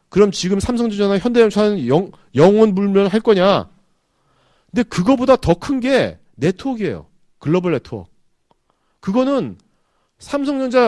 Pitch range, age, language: 145-210 Hz, 40-59, Korean